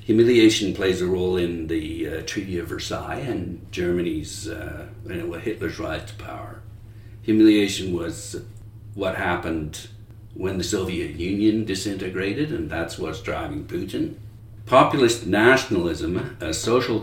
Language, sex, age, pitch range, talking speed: English, male, 60-79, 95-110 Hz, 130 wpm